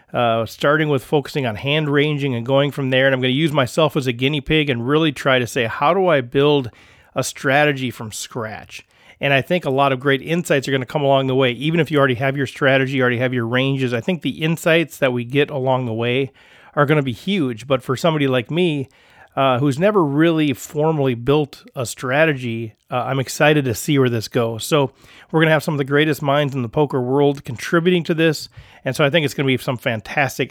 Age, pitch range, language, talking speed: 40-59, 130-150 Hz, English, 240 wpm